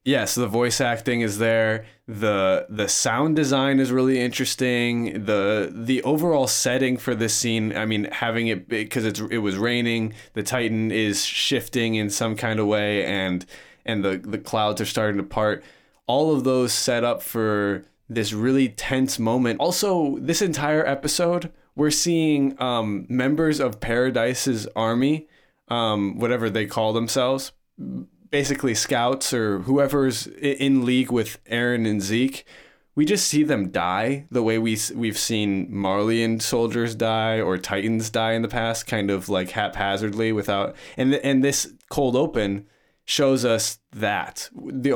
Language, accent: English, American